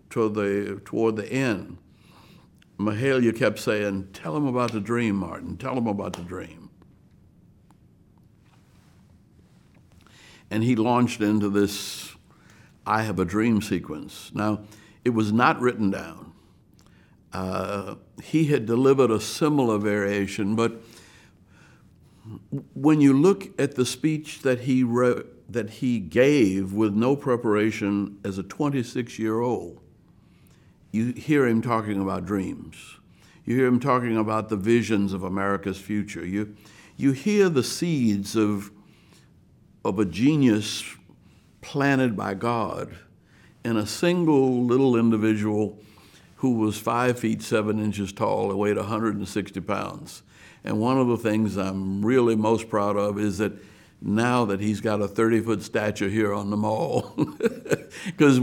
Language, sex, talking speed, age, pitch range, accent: English, male, 135 wpm, 60-79, 100-125 Hz, American